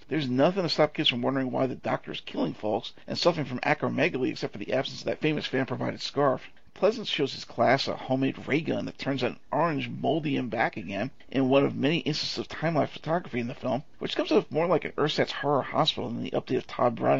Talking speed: 240 wpm